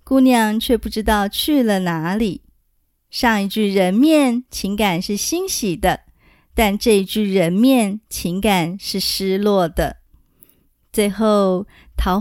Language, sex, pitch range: Chinese, female, 190-260 Hz